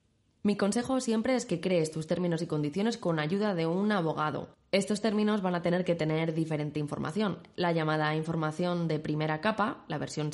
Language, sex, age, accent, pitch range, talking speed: Spanish, female, 20-39, Spanish, 155-200 Hz, 185 wpm